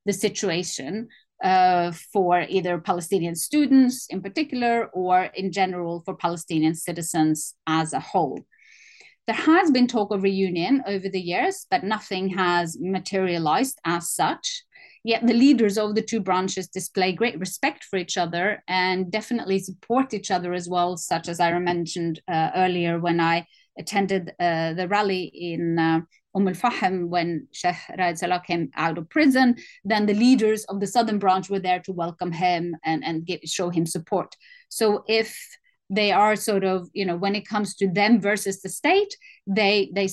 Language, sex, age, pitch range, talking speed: English, female, 30-49, 170-210 Hz, 170 wpm